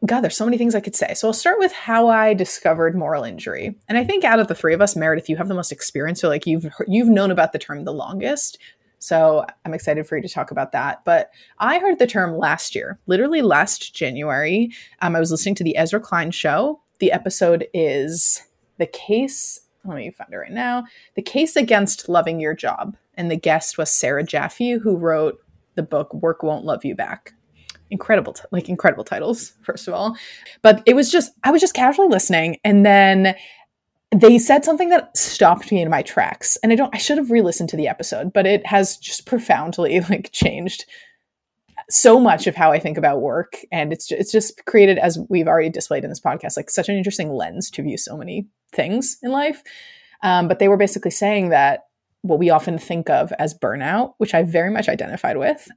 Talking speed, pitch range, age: 215 wpm, 165-240 Hz, 20-39